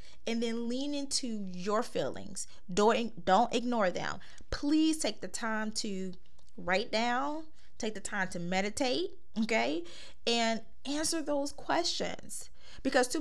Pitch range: 205-275 Hz